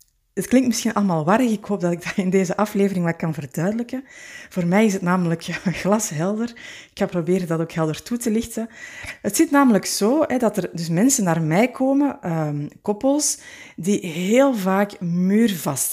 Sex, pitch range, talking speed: female, 175-230 Hz, 190 wpm